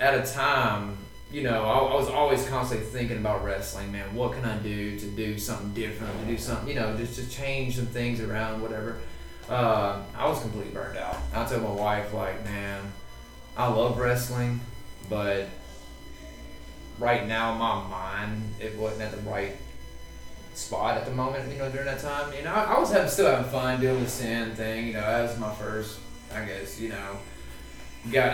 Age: 20-39